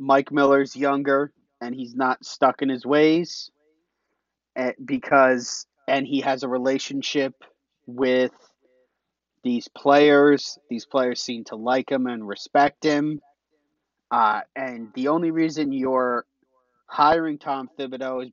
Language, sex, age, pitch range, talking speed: English, male, 30-49, 130-160 Hz, 125 wpm